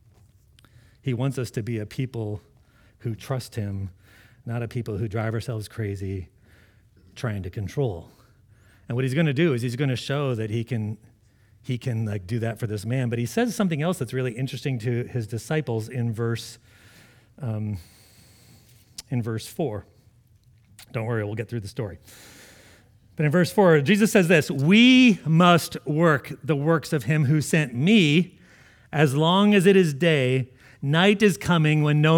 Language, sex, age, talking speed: English, male, 40-59, 175 wpm